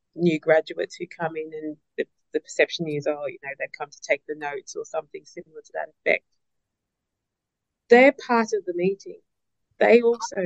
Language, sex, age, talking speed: English, female, 20-39, 185 wpm